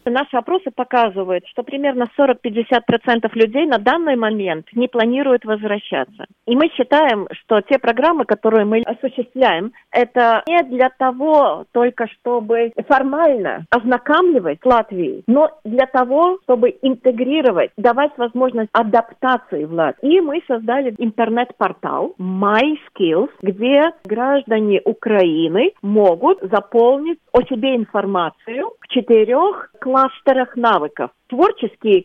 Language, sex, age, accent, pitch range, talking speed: Russian, female, 40-59, native, 200-270 Hz, 115 wpm